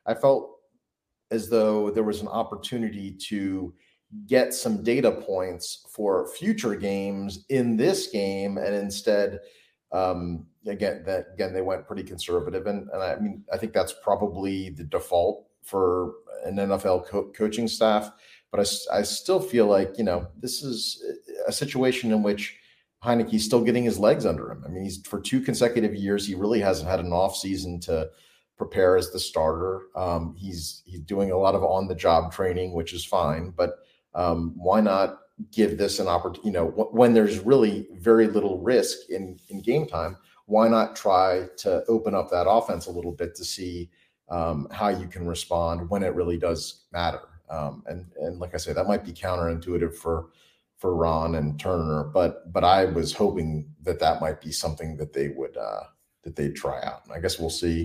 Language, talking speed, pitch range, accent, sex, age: English, 185 wpm, 85-115 Hz, American, male, 30-49